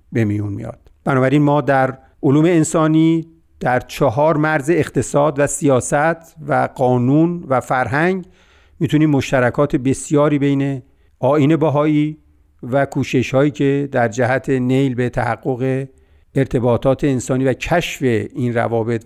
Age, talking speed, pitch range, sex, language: 50-69, 125 wpm, 125-150 Hz, male, Persian